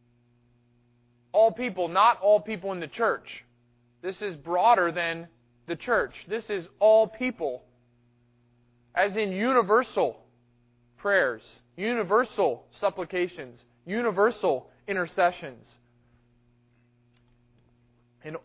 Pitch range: 120-185 Hz